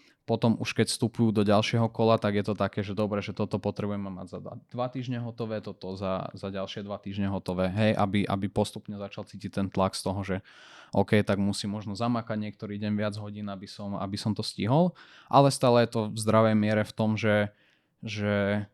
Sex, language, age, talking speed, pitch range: male, Slovak, 20-39, 210 wpm, 105-115 Hz